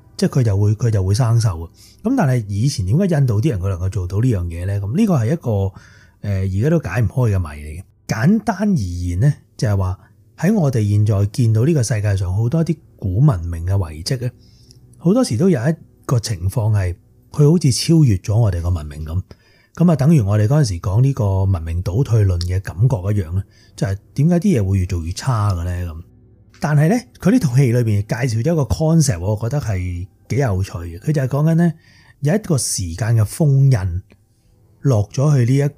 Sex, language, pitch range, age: male, Chinese, 100-140 Hz, 30-49